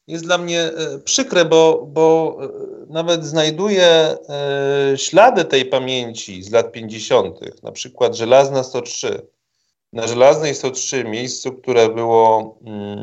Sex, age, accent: male, 30-49, native